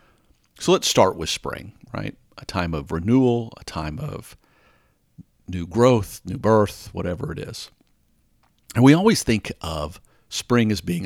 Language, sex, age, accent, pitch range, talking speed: English, male, 50-69, American, 80-110 Hz, 150 wpm